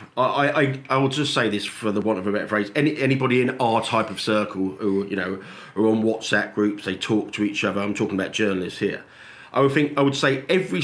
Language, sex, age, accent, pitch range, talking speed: English, male, 50-69, British, 105-135 Hz, 250 wpm